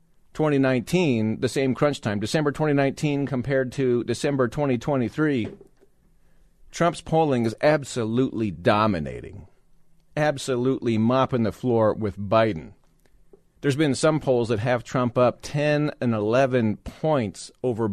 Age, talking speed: 40-59, 115 wpm